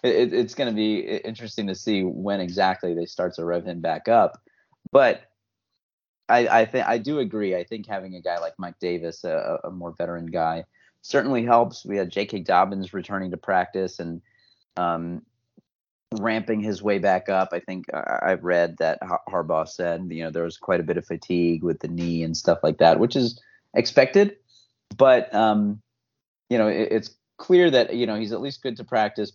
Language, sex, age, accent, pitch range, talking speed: English, male, 30-49, American, 90-120 Hz, 190 wpm